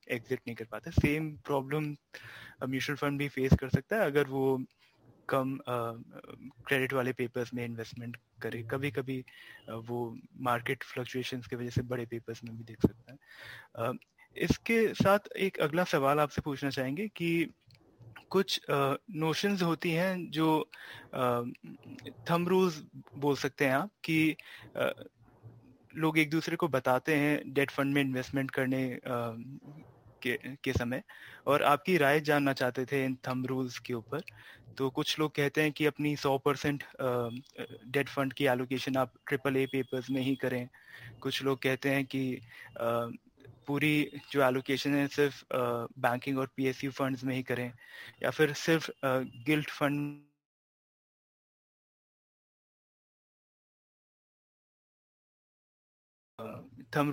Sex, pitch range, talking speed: male, 125-145 Hz, 140 wpm